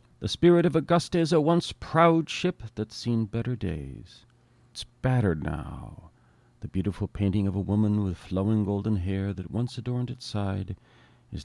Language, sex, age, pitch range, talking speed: English, male, 50-69, 90-130 Hz, 170 wpm